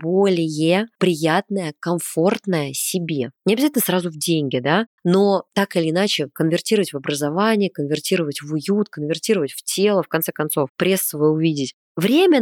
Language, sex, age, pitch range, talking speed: Russian, female, 20-39, 155-200 Hz, 145 wpm